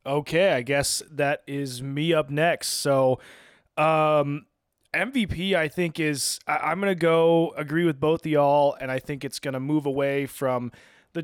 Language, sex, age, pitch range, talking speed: English, male, 20-39, 130-160 Hz, 175 wpm